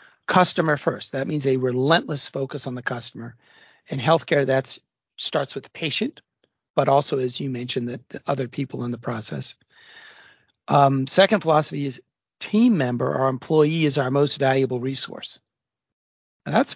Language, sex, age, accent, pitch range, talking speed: English, male, 40-59, American, 130-160 Hz, 155 wpm